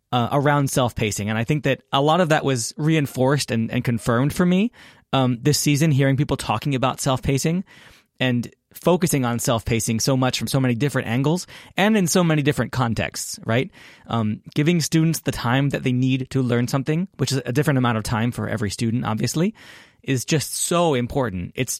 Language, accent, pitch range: English, American, 120-155 Hz